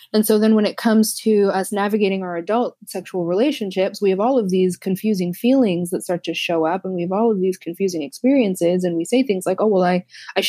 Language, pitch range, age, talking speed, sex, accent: English, 180-220 Hz, 20-39, 240 wpm, female, American